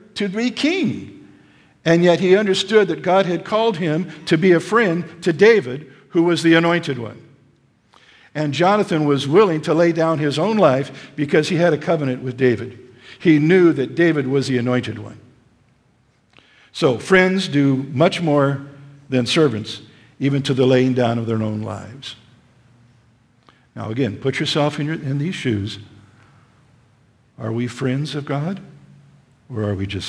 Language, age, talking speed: English, 50-69, 165 wpm